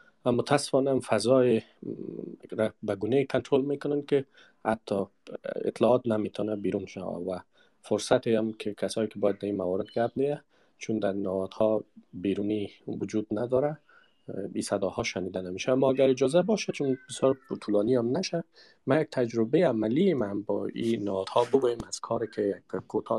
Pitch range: 105-135 Hz